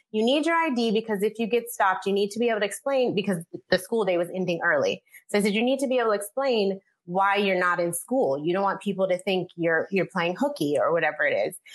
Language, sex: English, female